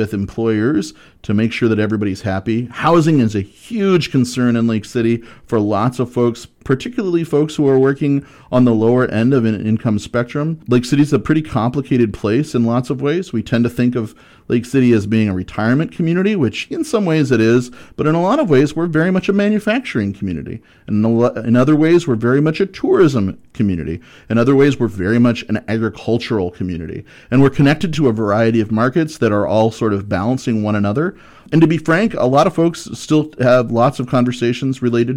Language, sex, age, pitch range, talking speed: English, male, 40-59, 110-140 Hz, 210 wpm